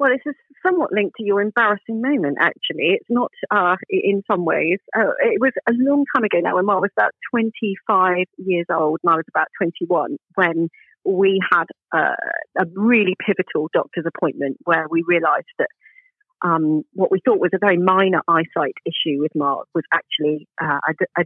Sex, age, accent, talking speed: female, 40-59, British, 185 wpm